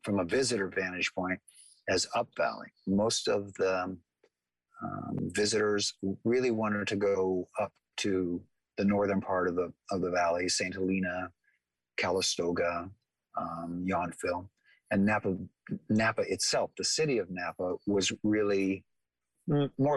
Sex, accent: male, American